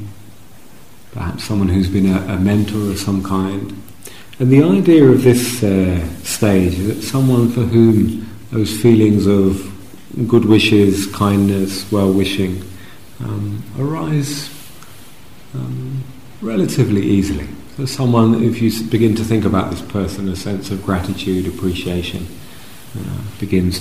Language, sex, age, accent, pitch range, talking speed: English, male, 40-59, British, 95-115 Hz, 125 wpm